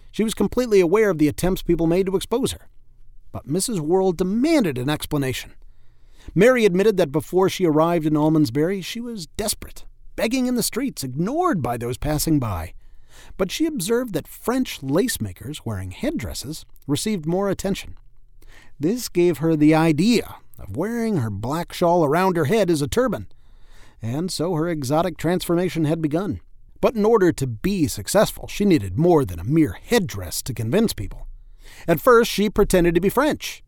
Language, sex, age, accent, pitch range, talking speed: English, male, 40-59, American, 140-190 Hz, 170 wpm